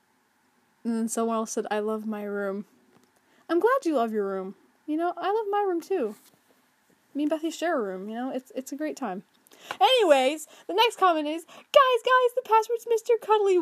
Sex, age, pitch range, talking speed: female, 20-39, 235-350 Hz, 205 wpm